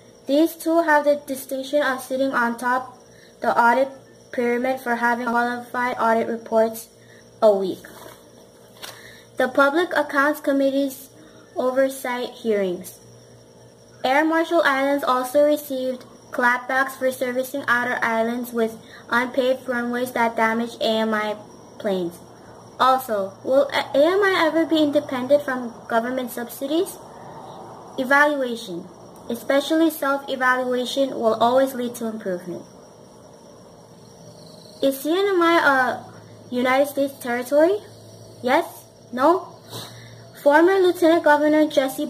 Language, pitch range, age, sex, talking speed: English, 235-285 Hz, 20-39, female, 100 wpm